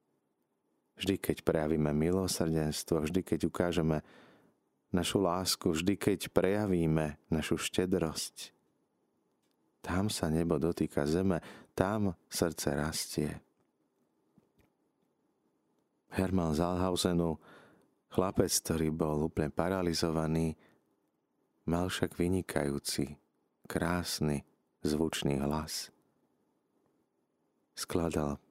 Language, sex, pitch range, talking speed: Slovak, male, 75-90 Hz, 75 wpm